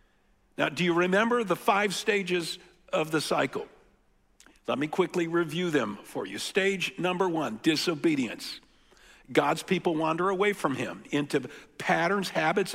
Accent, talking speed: American, 140 wpm